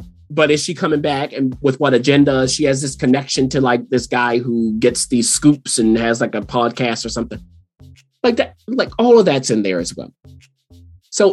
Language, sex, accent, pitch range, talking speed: English, male, American, 120-155 Hz, 205 wpm